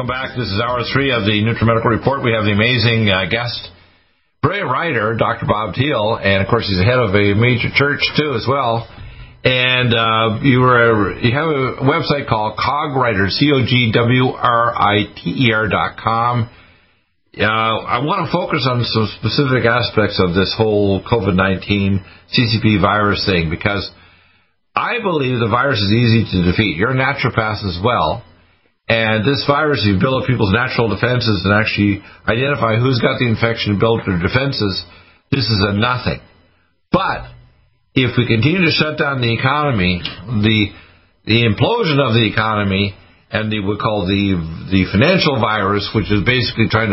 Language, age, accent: English, 50-69, American